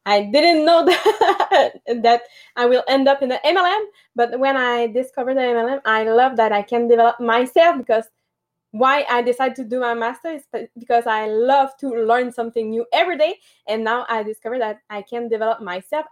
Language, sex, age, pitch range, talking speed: English, female, 20-39, 235-285 Hz, 195 wpm